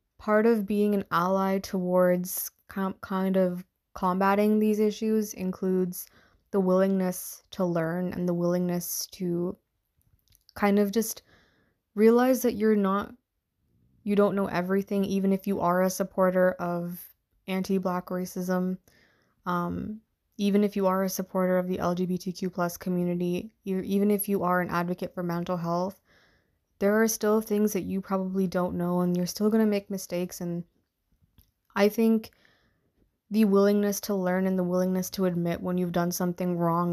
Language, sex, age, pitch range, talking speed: English, female, 20-39, 180-200 Hz, 155 wpm